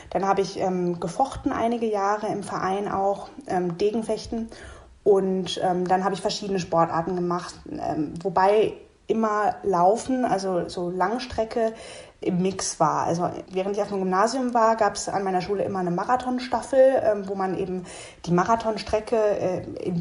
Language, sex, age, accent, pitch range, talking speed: German, female, 20-39, German, 180-230 Hz, 155 wpm